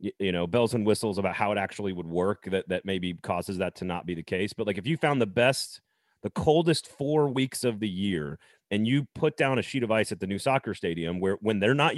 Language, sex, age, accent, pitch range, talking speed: English, male, 30-49, American, 100-135 Hz, 260 wpm